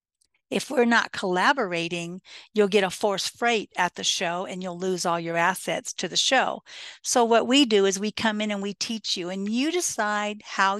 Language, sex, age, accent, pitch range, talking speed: English, female, 50-69, American, 185-230 Hz, 205 wpm